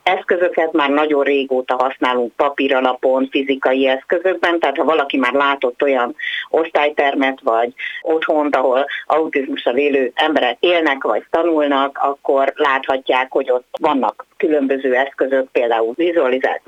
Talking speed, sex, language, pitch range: 120 wpm, female, Hungarian, 135-155 Hz